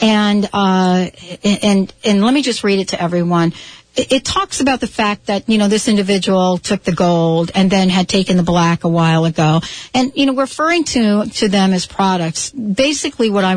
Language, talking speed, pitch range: English, 205 wpm, 185-230 Hz